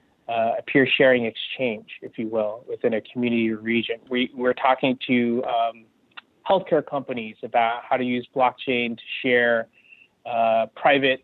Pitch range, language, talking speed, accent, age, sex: 120-150 Hz, English, 155 wpm, American, 30-49, male